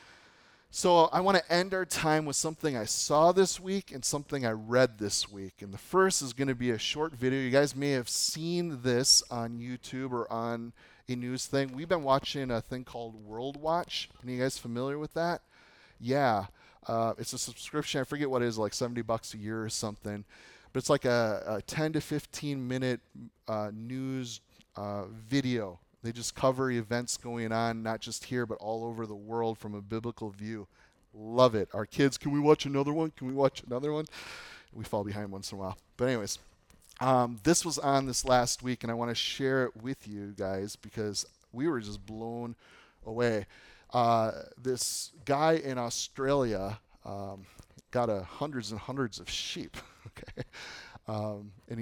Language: English